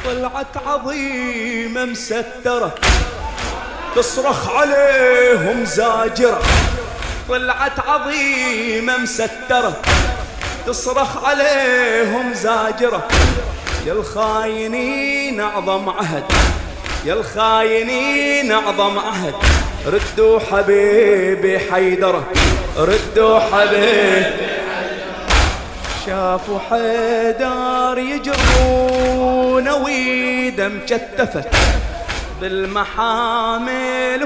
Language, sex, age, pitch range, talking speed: English, male, 30-49, 220-255 Hz, 60 wpm